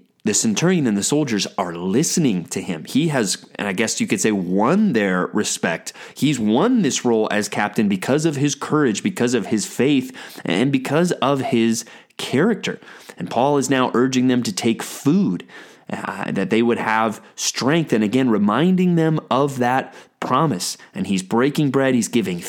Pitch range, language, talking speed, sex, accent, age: 115-160 Hz, English, 180 wpm, male, American, 30-49